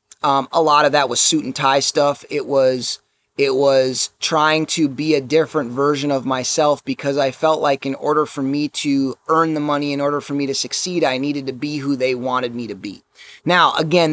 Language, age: English, 30-49